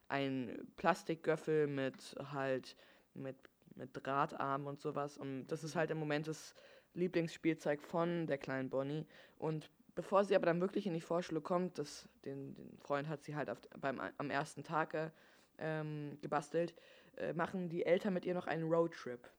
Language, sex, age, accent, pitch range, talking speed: German, female, 20-39, German, 140-165 Hz, 165 wpm